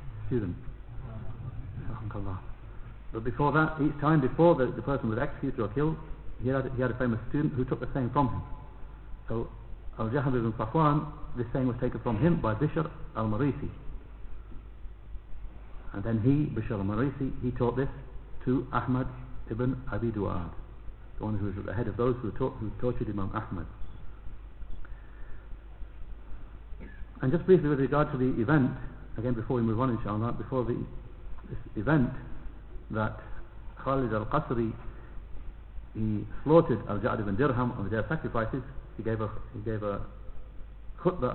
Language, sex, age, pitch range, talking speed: English, male, 60-79, 110-135 Hz, 155 wpm